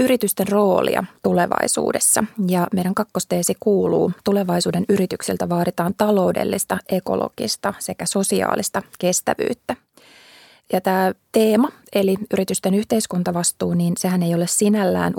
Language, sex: Finnish, female